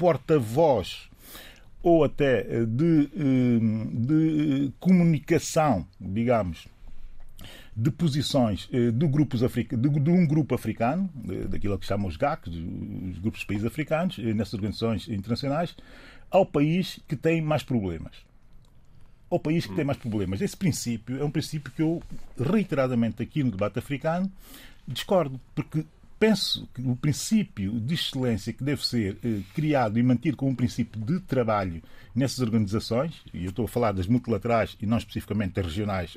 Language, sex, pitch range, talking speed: Portuguese, male, 110-155 Hz, 145 wpm